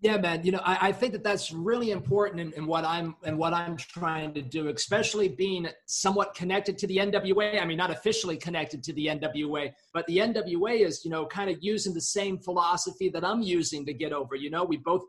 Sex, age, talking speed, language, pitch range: male, 30-49, 230 wpm, English, 155-195 Hz